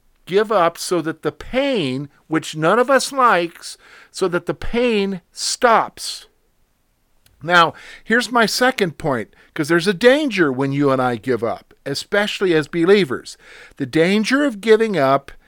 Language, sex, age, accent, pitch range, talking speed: English, male, 50-69, American, 150-220 Hz, 150 wpm